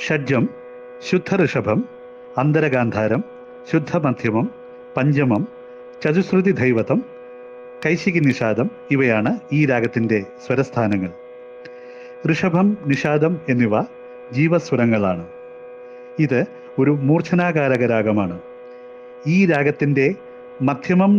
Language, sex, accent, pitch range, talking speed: Malayalam, male, native, 125-150 Hz, 75 wpm